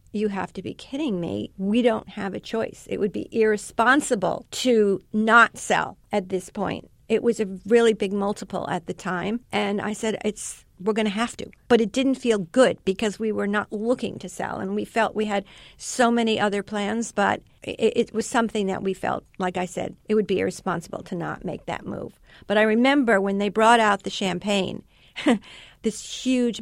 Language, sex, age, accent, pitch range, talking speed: English, female, 50-69, American, 200-230 Hz, 205 wpm